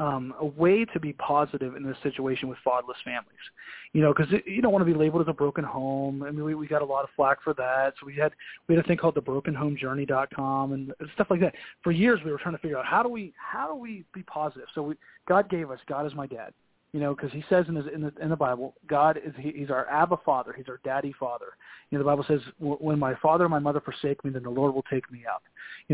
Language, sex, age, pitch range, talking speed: English, male, 30-49, 140-170 Hz, 285 wpm